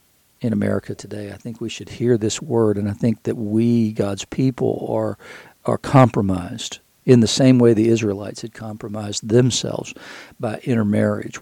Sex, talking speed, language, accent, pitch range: male, 165 wpm, English, American, 105-120 Hz